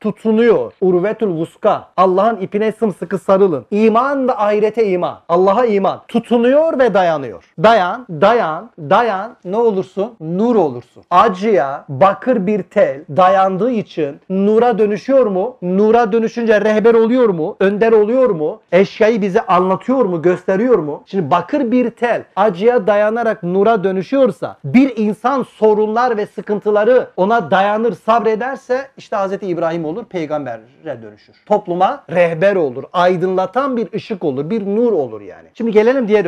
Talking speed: 135 wpm